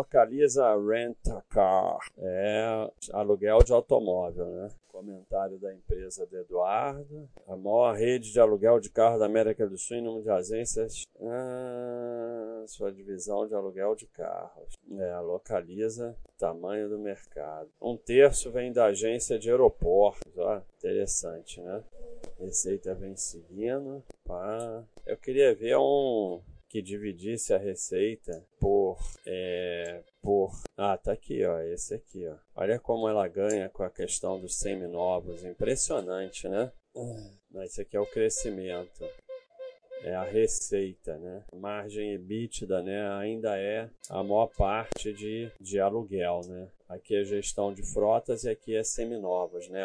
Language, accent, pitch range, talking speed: Portuguese, Brazilian, 95-135 Hz, 140 wpm